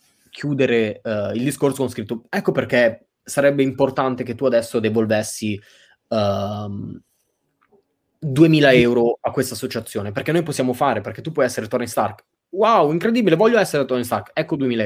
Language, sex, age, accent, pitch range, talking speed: Italian, male, 20-39, native, 110-140 Hz, 145 wpm